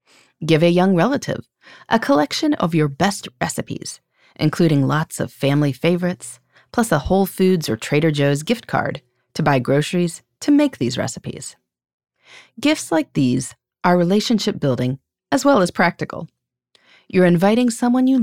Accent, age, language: American, 30-49, English